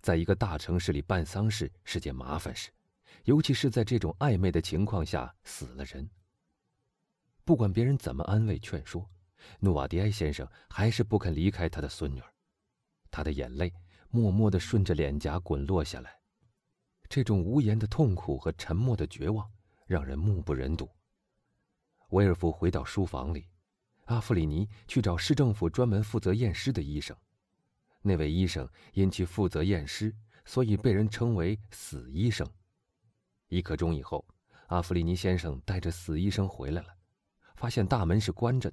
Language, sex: Chinese, male